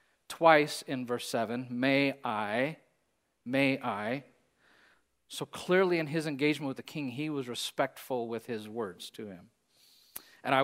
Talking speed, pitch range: 145 wpm, 120-145 Hz